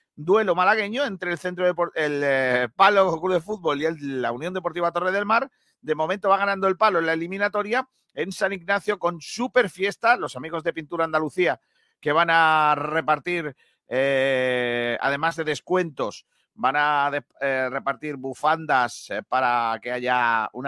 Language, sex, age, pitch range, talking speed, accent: Spanish, male, 40-59, 155-215 Hz, 170 wpm, Spanish